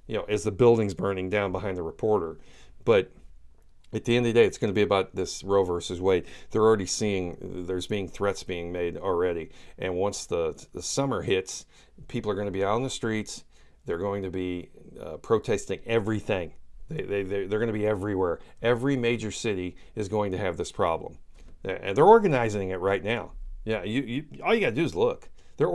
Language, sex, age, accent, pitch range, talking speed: English, male, 40-59, American, 95-125 Hz, 210 wpm